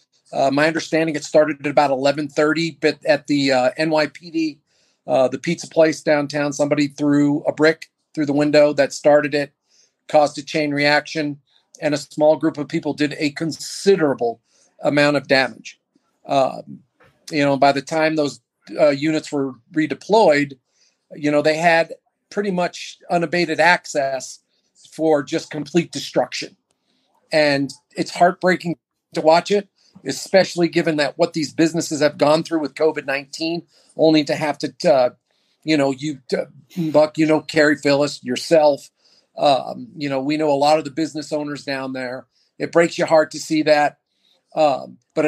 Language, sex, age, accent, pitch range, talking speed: English, male, 40-59, American, 145-165 Hz, 160 wpm